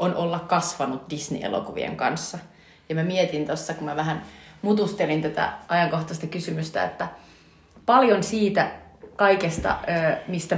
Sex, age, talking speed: female, 30-49, 120 wpm